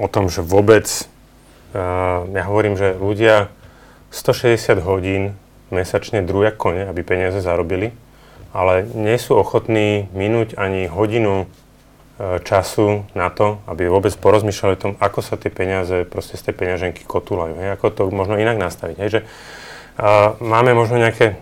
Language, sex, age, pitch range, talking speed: Slovak, male, 30-49, 95-115 Hz, 135 wpm